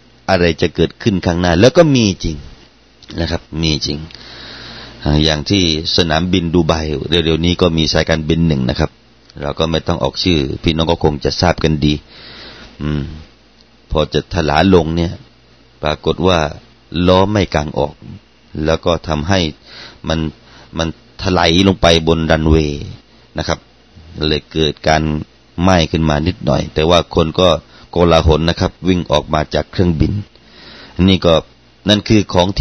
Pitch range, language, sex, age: 80-110 Hz, Thai, male, 30-49